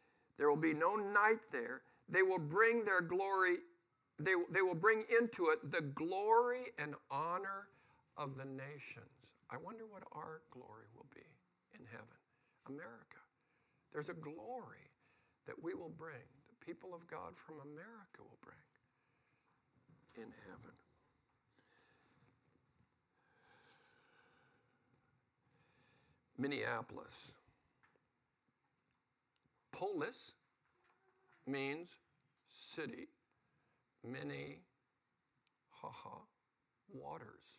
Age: 60-79